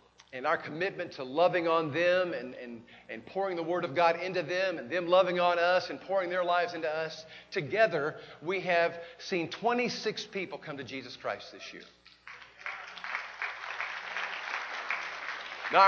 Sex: male